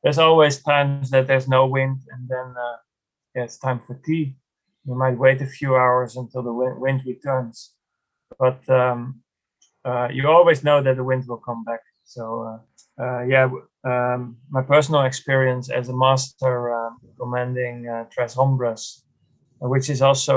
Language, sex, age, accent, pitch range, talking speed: English, male, 20-39, Dutch, 125-140 Hz, 165 wpm